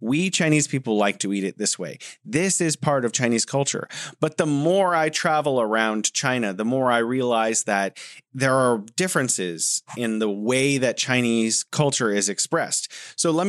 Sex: male